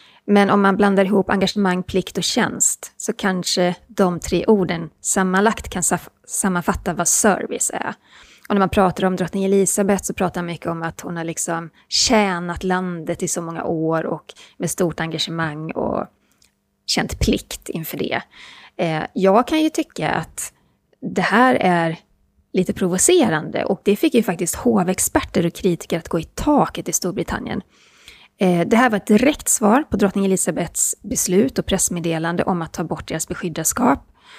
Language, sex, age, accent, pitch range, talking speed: Swedish, female, 30-49, native, 175-215 Hz, 160 wpm